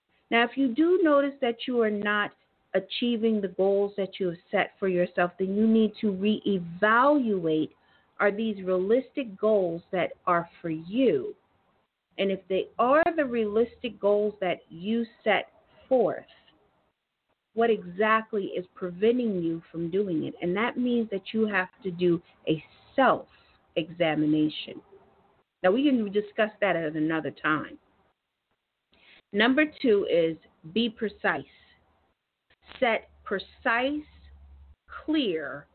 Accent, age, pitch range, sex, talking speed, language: American, 40-59, 185-250 Hz, female, 130 wpm, English